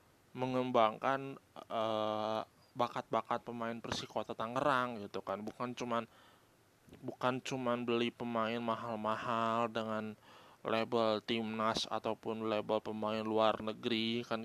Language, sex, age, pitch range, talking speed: Indonesian, male, 20-39, 115-150 Hz, 100 wpm